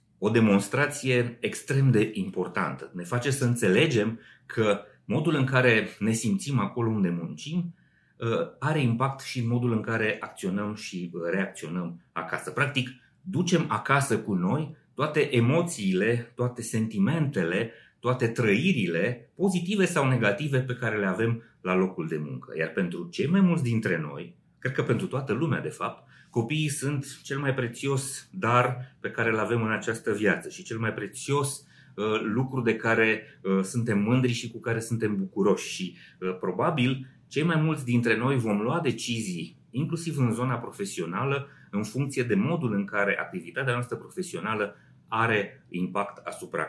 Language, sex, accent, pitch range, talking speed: Romanian, male, native, 110-140 Hz, 150 wpm